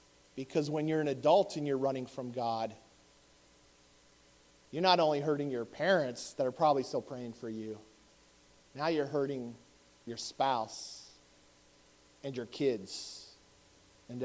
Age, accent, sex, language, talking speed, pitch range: 40-59, American, male, English, 135 wpm, 130-170 Hz